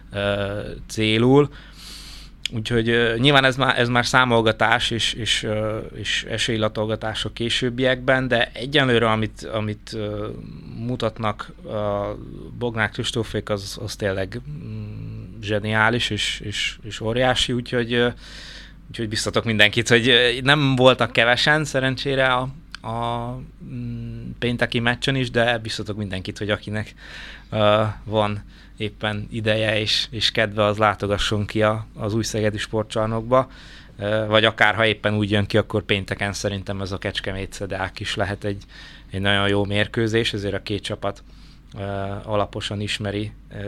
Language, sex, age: Hungarian, male, 20-39